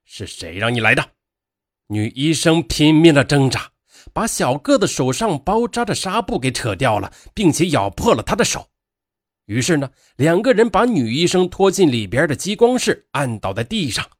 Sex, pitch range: male, 110-165 Hz